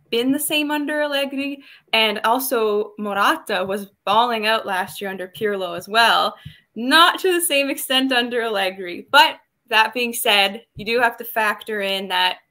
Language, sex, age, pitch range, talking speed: English, female, 10-29, 195-250 Hz, 170 wpm